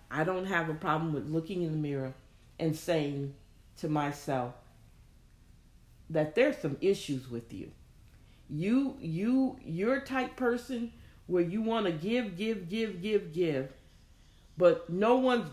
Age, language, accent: 40-59, English, American